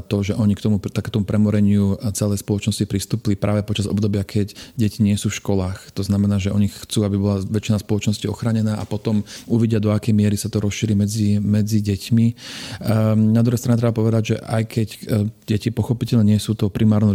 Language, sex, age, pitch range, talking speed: Slovak, male, 40-59, 100-110 Hz, 195 wpm